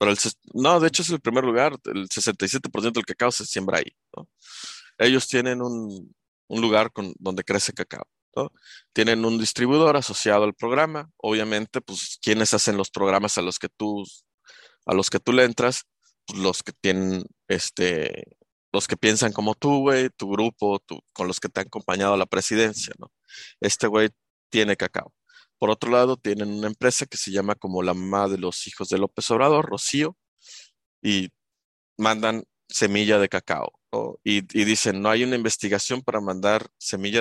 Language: Spanish